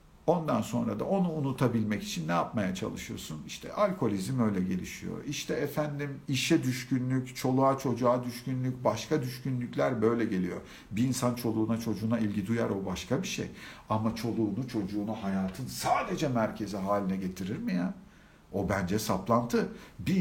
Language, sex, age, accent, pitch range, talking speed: Turkish, male, 50-69, native, 110-175 Hz, 145 wpm